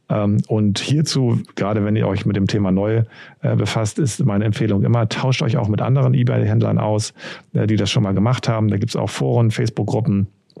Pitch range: 100-120 Hz